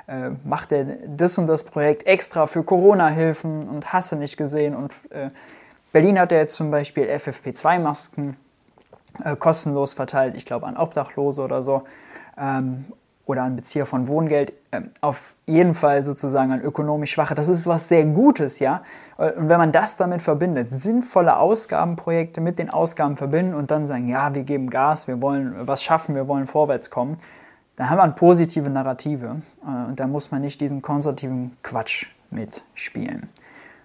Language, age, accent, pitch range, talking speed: German, 20-39, German, 135-160 Hz, 165 wpm